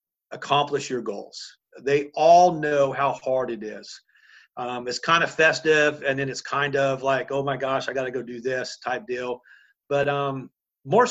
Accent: American